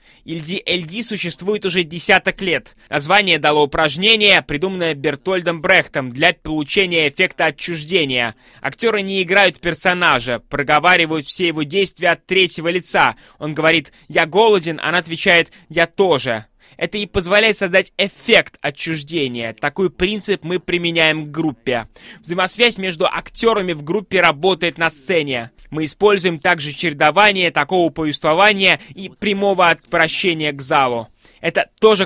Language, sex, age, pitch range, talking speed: Russian, male, 20-39, 145-185 Hz, 125 wpm